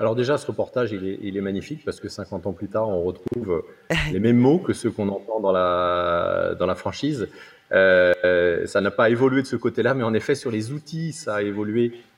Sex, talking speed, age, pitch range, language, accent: male, 225 wpm, 30-49, 110-135 Hz, French, French